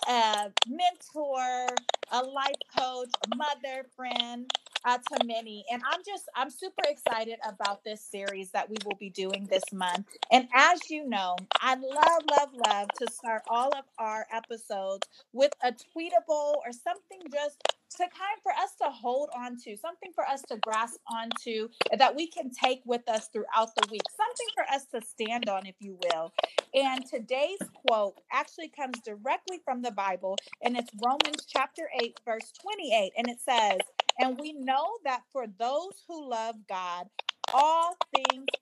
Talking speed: 170 wpm